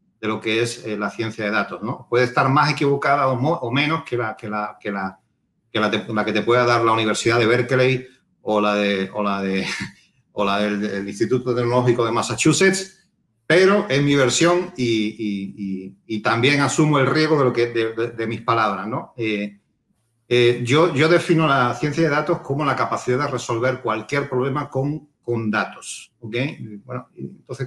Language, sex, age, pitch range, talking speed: Spanish, male, 40-59, 115-145 Hz, 190 wpm